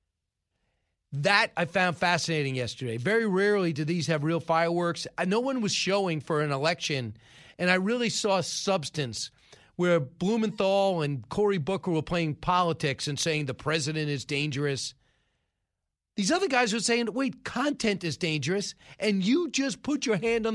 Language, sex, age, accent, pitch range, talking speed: English, male, 40-59, American, 135-190 Hz, 160 wpm